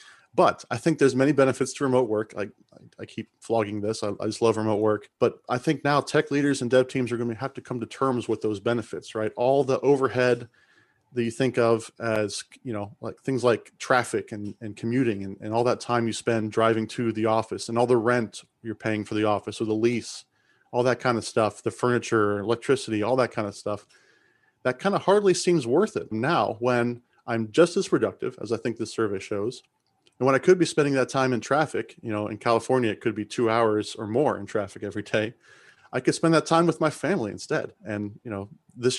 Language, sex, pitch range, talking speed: English, male, 110-130 Hz, 235 wpm